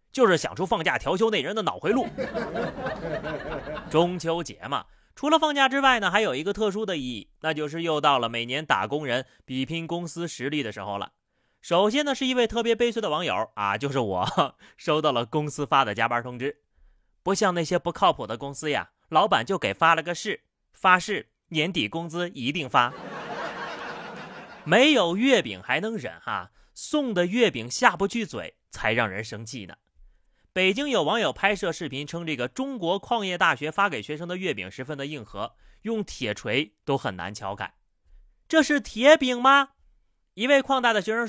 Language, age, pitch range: Chinese, 30-49, 135-215 Hz